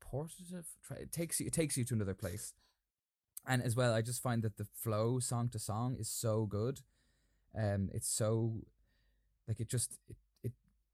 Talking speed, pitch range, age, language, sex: 180 wpm, 100-120 Hz, 20-39, English, male